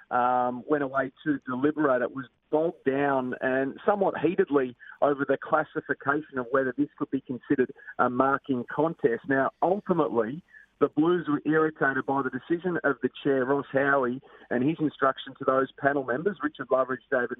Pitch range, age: 125-155 Hz, 40-59